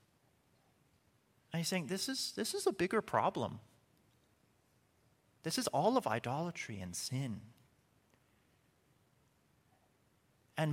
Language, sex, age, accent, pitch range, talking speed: English, male, 30-49, American, 110-150 Hz, 100 wpm